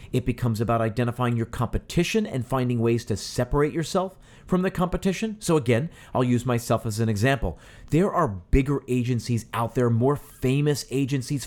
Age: 40-59